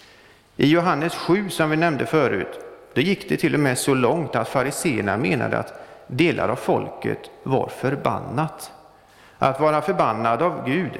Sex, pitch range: male, 125-175 Hz